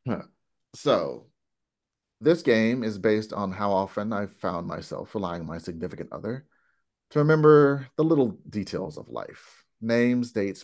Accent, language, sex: American, English, male